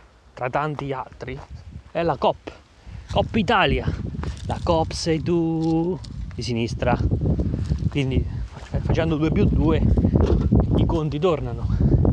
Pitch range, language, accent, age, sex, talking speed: 115-150 Hz, Italian, native, 30-49, male, 105 wpm